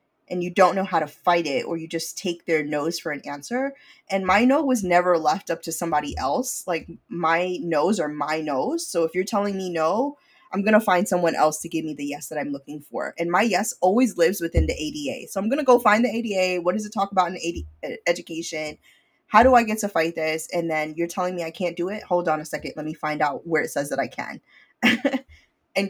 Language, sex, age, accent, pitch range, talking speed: English, female, 20-39, American, 160-200 Hz, 255 wpm